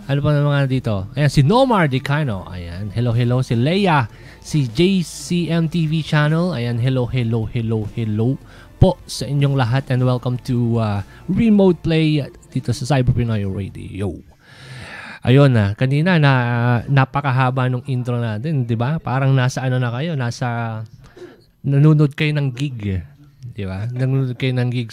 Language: Filipino